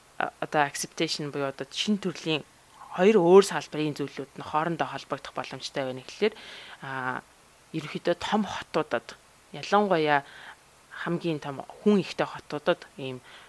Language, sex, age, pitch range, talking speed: English, female, 20-39, 145-185 Hz, 100 wpm